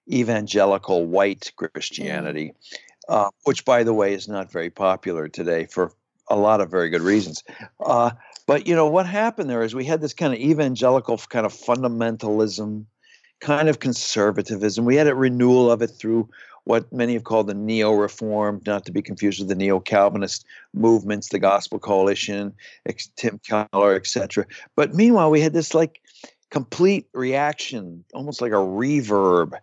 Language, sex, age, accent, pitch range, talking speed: English, male, 60-79, American, 100-130 Hz, 165 wpm